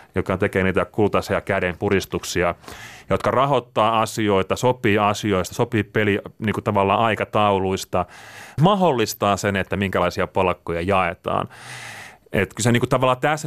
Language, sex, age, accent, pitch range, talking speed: Finnish, male, 30-49, native, 95-115 Hz, 110 wpm